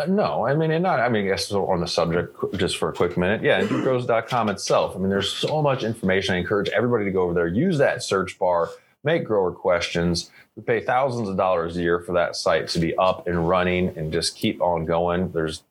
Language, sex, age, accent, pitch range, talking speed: English, male, 30-49, American, 85-120 Hz, 235 wpm